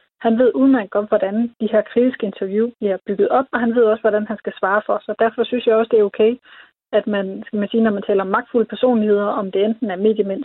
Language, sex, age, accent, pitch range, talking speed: Danish, female, 30-49, native, 205-240 Hz, 260 wpm